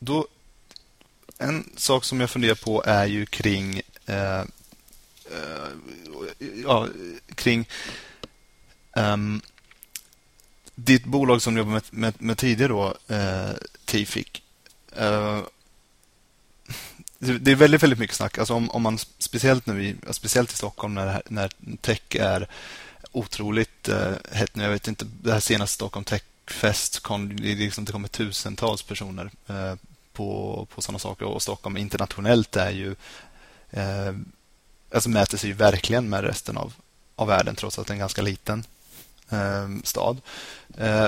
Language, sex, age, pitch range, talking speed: Swedish, male, 30-49, 100-115 Hz, 145 wpm